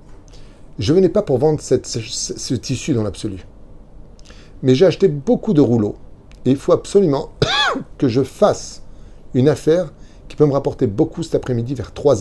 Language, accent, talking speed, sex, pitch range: French, French, 180 wpm, male, 100-150 Hz